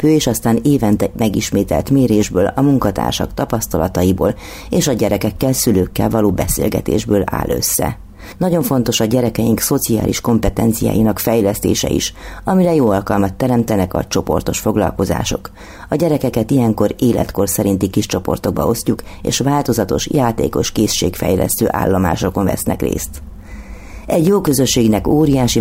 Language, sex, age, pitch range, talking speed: Hungarian, female, 30-49, 100-125 Hz, 120 wpm